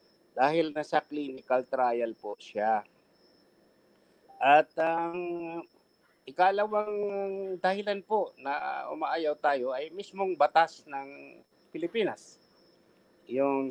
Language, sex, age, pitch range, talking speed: English, male, 50-69, 120-170 Hz, 90 wpm